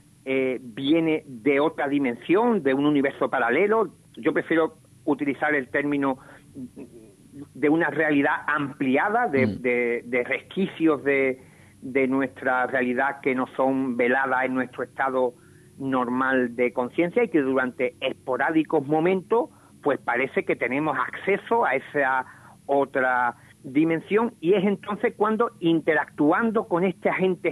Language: Spanish